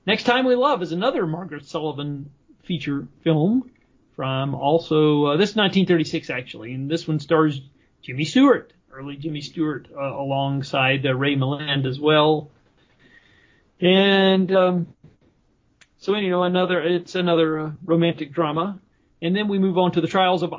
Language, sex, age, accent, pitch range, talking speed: English, male, 40-59, American, 145-180 Hz, 155 wpm